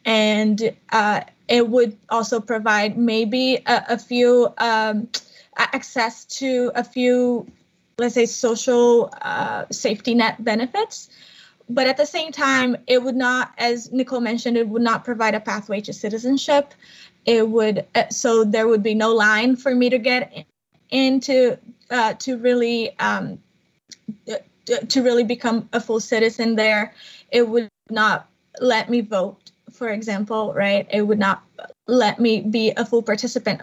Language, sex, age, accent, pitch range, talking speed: English, female, 20-39, American, 215-245 Hz, 150 wpm